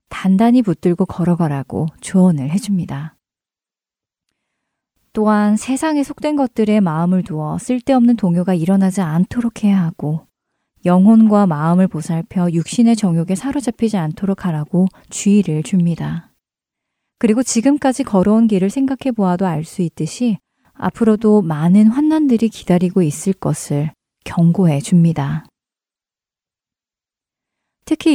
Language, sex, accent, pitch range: Korean, female, native, 170-220 Hz